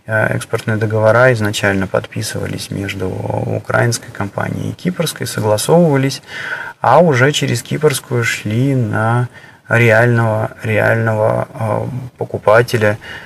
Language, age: Russian, 20-39